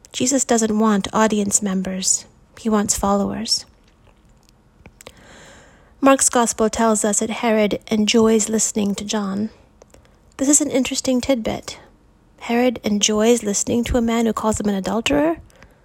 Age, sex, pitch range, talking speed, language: 30-49, female, 210-240 Hz, 130 wpm, English